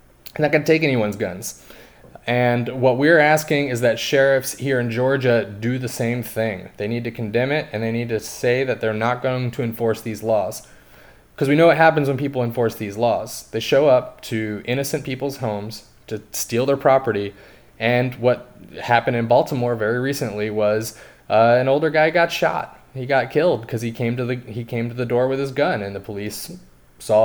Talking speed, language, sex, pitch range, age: 205 wpm, English, male, 115-140 Hz, 20-39